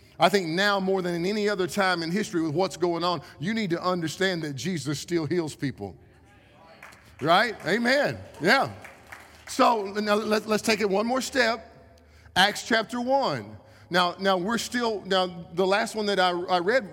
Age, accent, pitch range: 50-69, American, 160-200 Hz